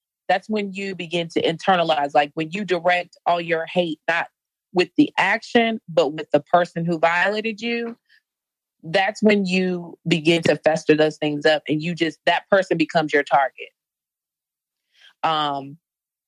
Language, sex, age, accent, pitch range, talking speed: English, female, 30-49, American, 160-195 Hz, 155 wpm